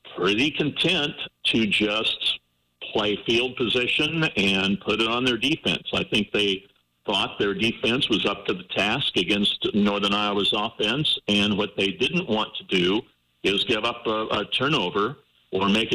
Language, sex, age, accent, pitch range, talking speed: English, male, 50-69, American, 100-115 Hz, 160 wpm